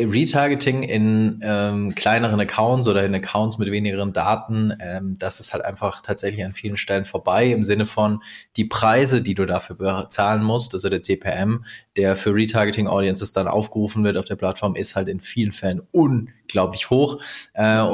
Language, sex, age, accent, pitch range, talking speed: German, male, 20-39, German, 105-120 Hz, 170 wpm